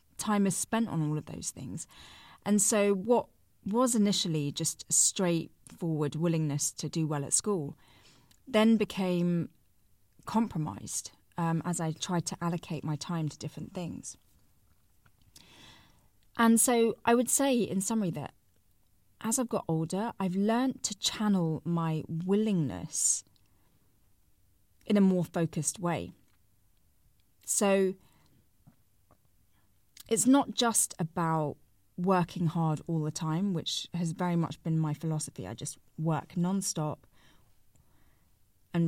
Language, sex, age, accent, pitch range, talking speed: English, female, 30-49, British, 145-195 Hz, 125 wpm